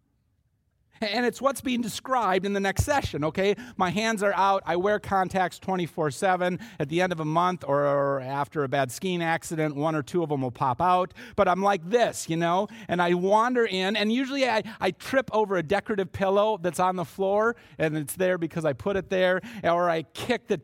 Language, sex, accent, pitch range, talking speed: English, male, American, 130-200 Hz, 210 wpm